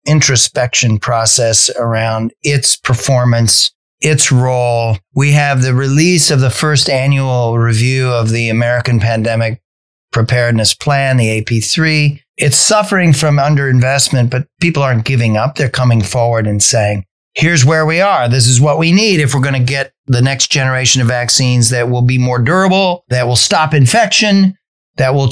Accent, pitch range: American, 120-165 Hz